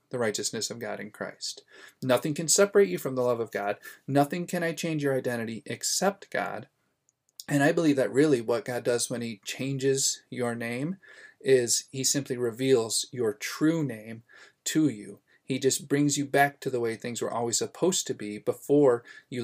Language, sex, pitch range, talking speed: English, male, 120-145 Hz, 190 wpm